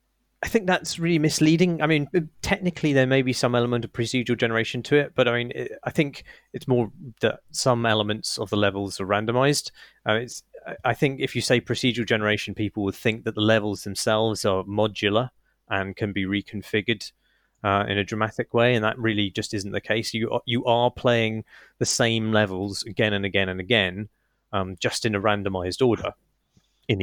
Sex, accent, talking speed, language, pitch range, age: male, British, 190 wpm, English, 100-130 Hz, 30-49